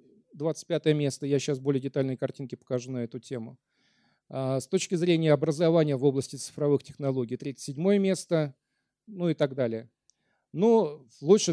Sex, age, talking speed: male, 40-59, 140 wpm